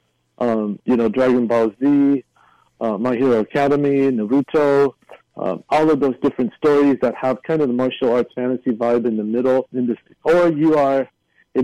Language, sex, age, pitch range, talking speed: English, male, 50-69, 120-140 Hz, 170 wpm